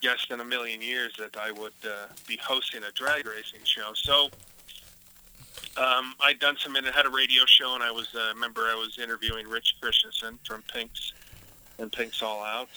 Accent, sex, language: American, male, English